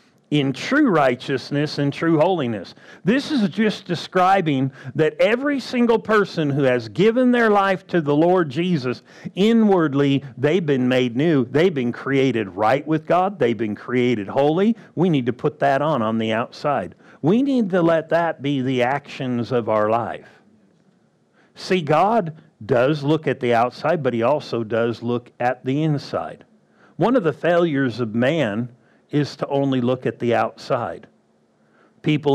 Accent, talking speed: American, 160 wpm